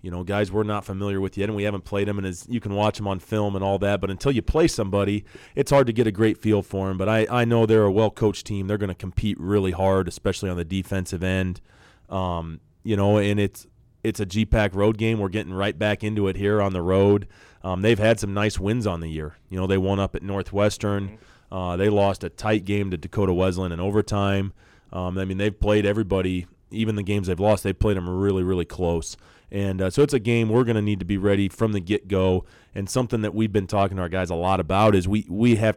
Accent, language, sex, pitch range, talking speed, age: American, English, male, 95-105 Hz, 255 wpm, 30-49